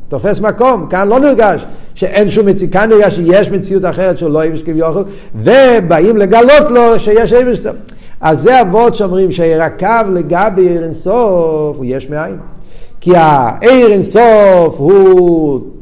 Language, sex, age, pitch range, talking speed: Hebrew, male, 50-69, 145-200 Hz, 140 wpm